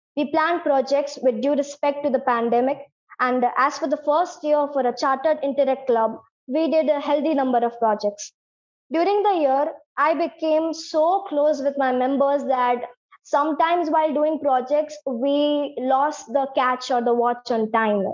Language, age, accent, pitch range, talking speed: Hindi, 20-39, native, 250-300 Hz, 170 wpm